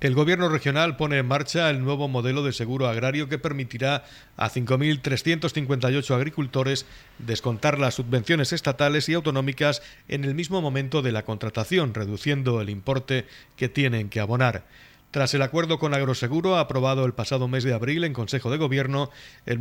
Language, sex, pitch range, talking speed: Spanish, male, 125-145 Hz, 160 wpm